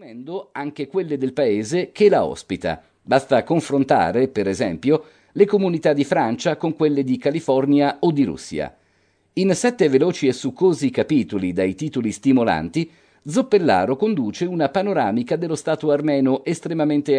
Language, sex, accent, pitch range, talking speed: Italian, male, native, 115-175 Hz, 135 wpm